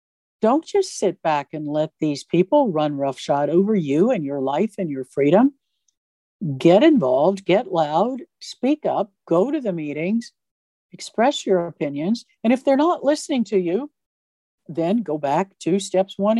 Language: English